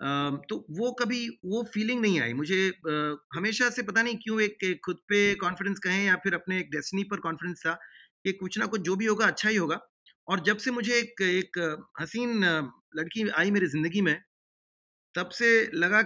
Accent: native